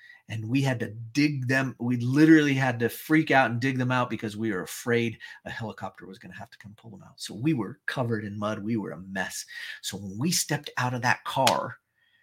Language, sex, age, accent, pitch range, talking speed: English, male, 40-59, American, 105-130 Hz, 240 wpm